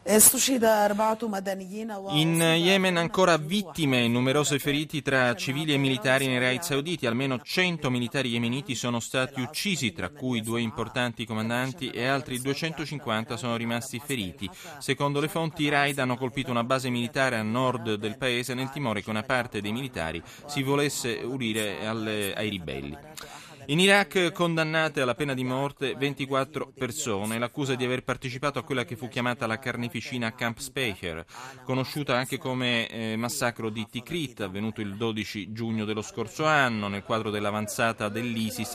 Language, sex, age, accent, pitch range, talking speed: Italian, male, 30-49, native, 115-145 Hz, 150 wpm